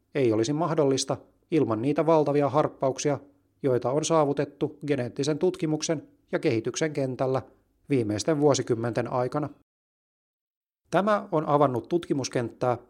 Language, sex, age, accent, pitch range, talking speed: Finnish, male, 30-49, native, 115-150 Hz, 100 wpm